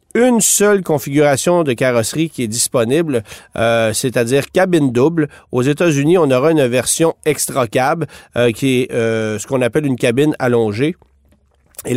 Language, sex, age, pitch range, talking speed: French, male, 40-59, 115-160 Hz, 145 wpm